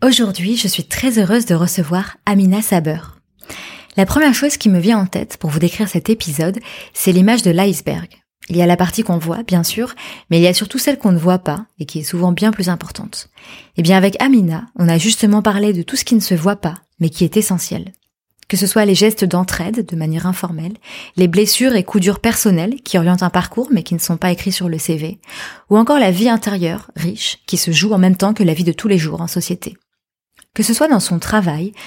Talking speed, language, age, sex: 240 wpm, French, 20-39, female